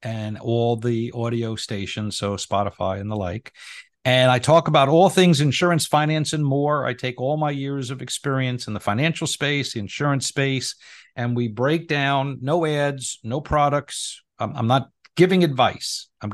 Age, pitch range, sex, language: 50-69, 115-140 Hz, male, English